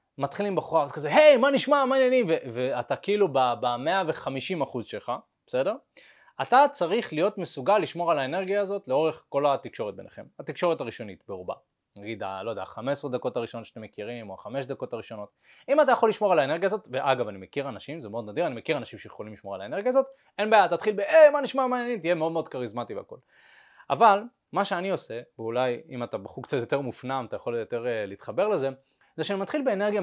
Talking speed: 170 wpm